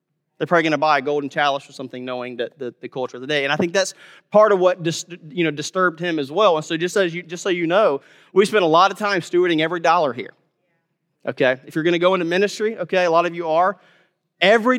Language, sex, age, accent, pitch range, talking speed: English, male, 30-49, American, 160-205 Hz, 265 wpm